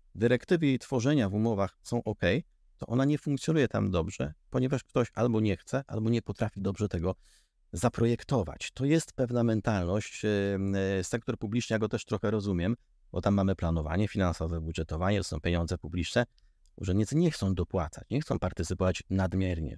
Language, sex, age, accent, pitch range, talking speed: Polish, male, 30-49, native, 85-110 Hz, 160 wpm